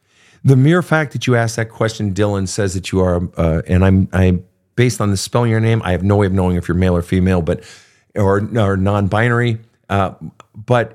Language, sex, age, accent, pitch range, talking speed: English, male, 40-59, American, 100-140 Hz, 220 wpm